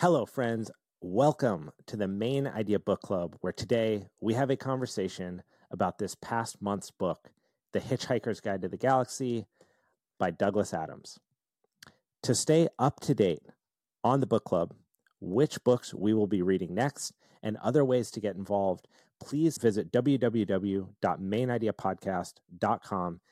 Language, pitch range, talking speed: English, 95-120 Hz, 140 wpm